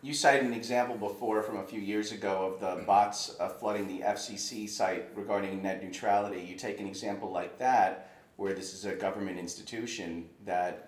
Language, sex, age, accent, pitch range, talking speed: English, male, 30-49, American, 95-105 Hz, 190 wpm